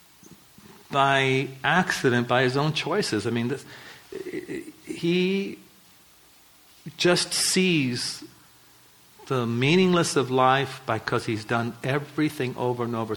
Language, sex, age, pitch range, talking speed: English, male, 50-69, 120-170 Hz, 100 wpm